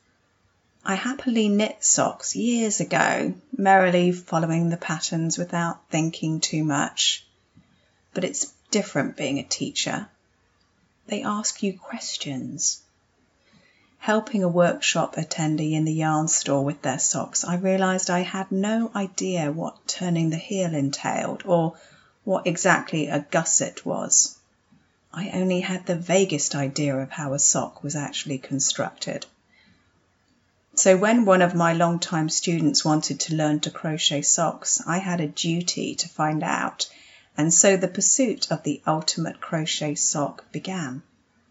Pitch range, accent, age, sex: 145-185 Hz, British, 40-59, female